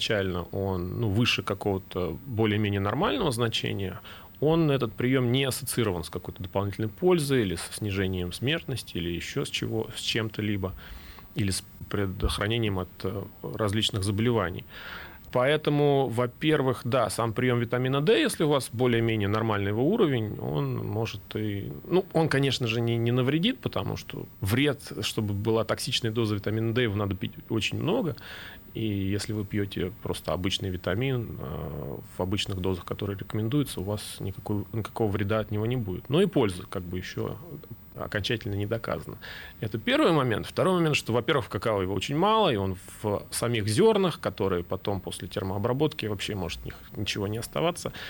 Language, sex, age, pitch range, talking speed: Russian, male, 30-49, 100-125 Hz, 160 wpm